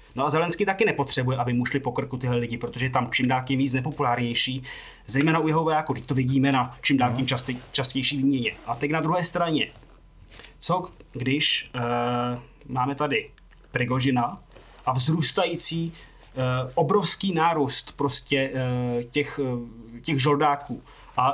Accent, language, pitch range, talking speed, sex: native, Czech, 130-155 Hz, 150 wpm, male